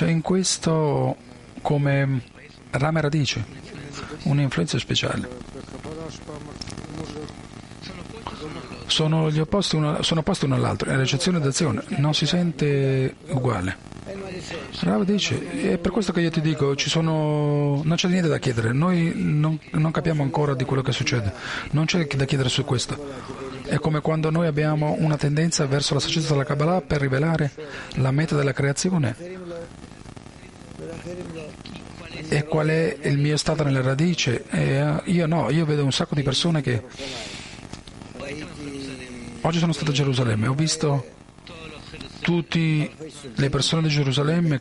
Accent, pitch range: native, 135-165 Hz